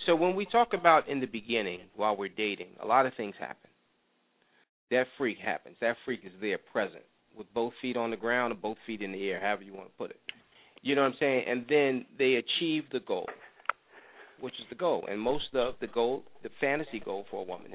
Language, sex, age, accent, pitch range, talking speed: English, male, 40-59, American, 115-150 Hz, 230 wpm